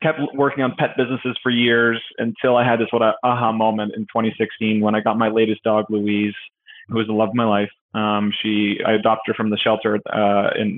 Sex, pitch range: male, 110-120 Hz